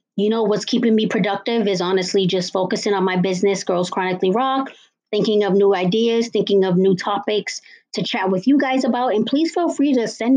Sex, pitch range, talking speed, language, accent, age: female, 185-235 Hz, 210 wpm, English, American, 30-49